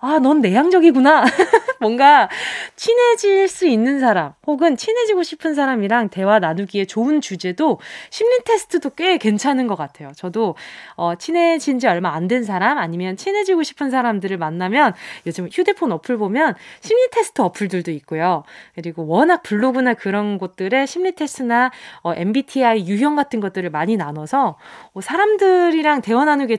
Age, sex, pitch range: 20-39, female, 195-295 Hz